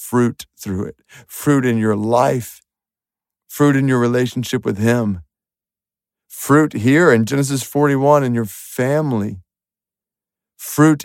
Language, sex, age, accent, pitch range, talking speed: English, male, 50-69, American, 120-150 Hz, 120 wpm